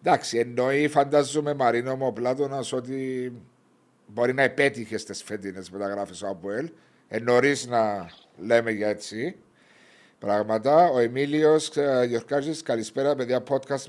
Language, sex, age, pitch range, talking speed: Greek, male, 60-79, 115-140 Hz, 125 wpm